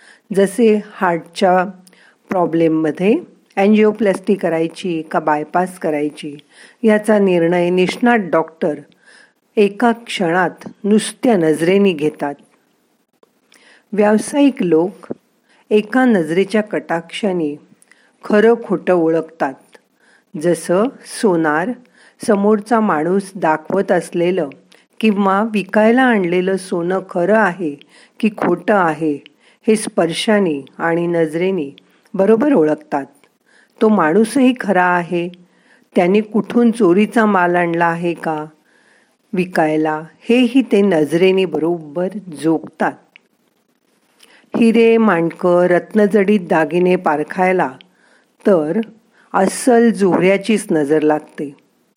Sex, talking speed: female, 85 wpm